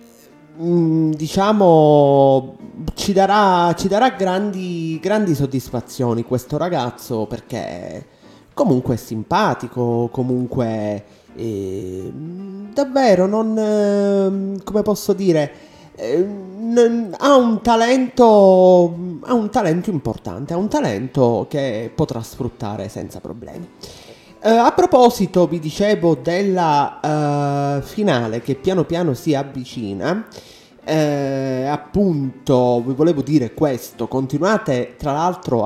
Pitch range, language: 115-170 Hz, Italian